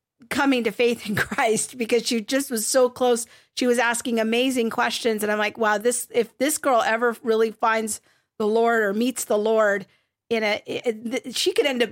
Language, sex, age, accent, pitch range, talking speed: English, female, 40-59, American, 215-250 Hz, 195 wpm